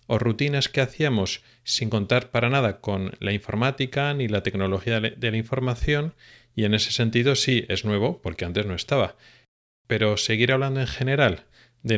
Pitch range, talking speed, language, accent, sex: 105-130 Hz, 170 wpm, Spanish, Spanish, male